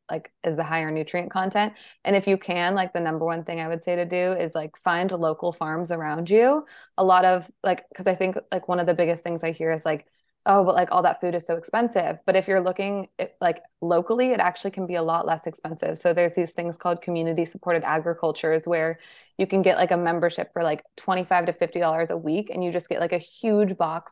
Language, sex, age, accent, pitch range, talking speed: English, female, 20-39, American, 170-190 Hz, 240 wpm